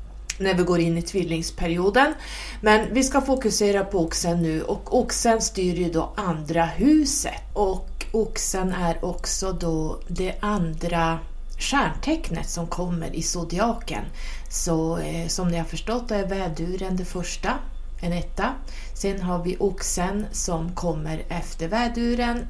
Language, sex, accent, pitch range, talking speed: Swedish, female, native, 165-215 Hz, 140 wpm